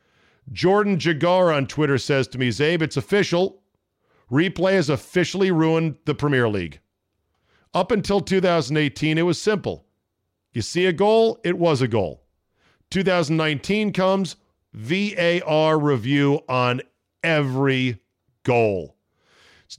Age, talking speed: 40-59, 120 wpm